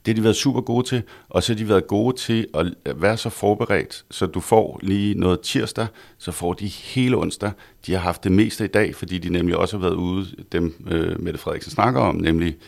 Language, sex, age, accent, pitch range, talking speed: Danish, male, 60-79, native, 85-110 Hz, 230 wpm